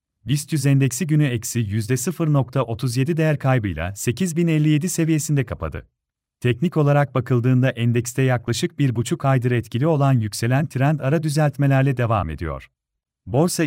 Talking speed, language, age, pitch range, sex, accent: 125 wpm, Turkish, 40-59, 120-155 Hz, male, native